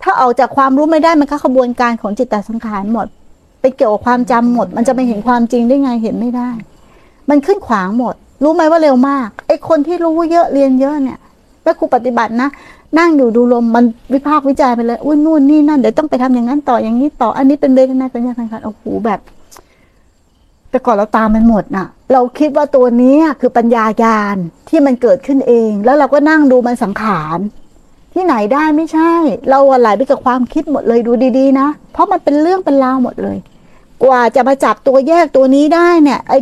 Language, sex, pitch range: Thai, female, 240-295 Hz